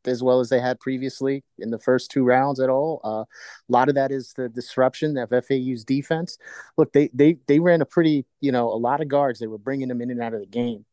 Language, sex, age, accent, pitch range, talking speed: English, male, 30-49, American, 120-140 Hz, 260 wpm